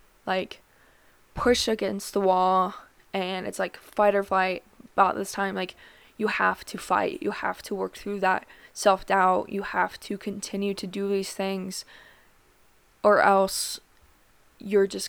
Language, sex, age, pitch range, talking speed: English, female, 20-39, 190-205 Hz, 150 wpm